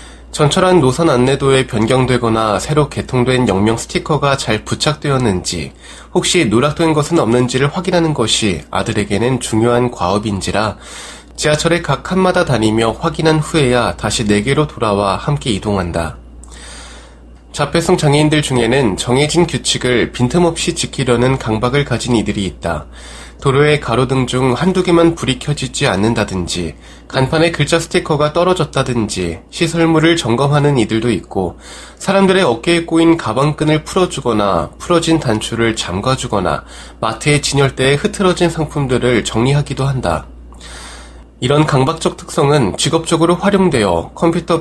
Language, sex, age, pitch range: Korean, male, 20-39, 105-155 Hz